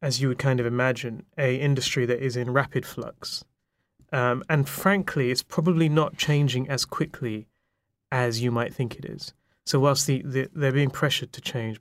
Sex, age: male, 30-49